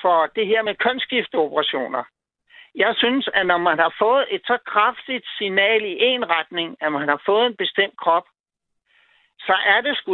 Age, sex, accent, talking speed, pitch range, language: 60-79, male, native, 180 wpm, 175-235 Hz, Danish